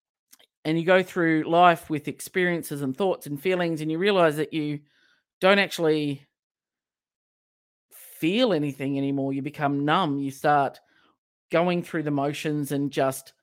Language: English